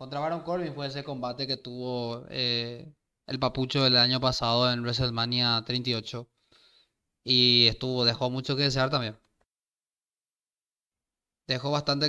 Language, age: Spanish, 20-39